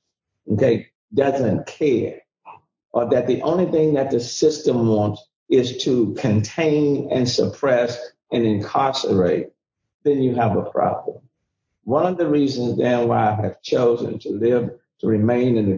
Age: 50-69